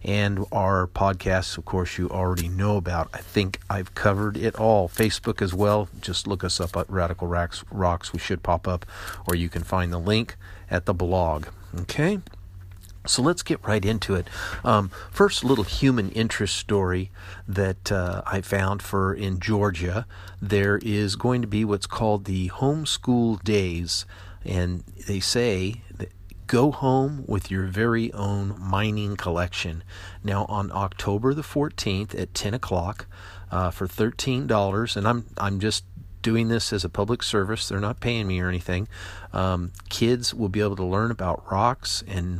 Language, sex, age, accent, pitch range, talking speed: English, male, 50-69, American, 90-105 Hz, 165 wpm